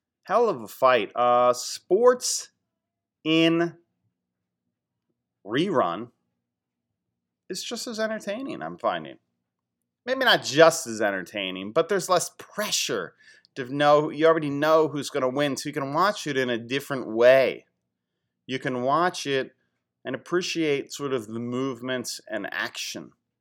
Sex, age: male, 30-49